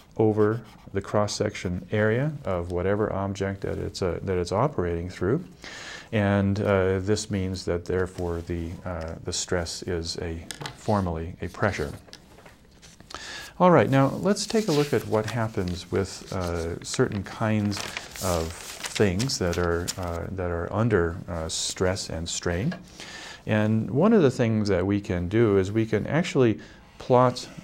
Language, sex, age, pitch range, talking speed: English, male, 40-59, 90-110 Hz, 150 wpm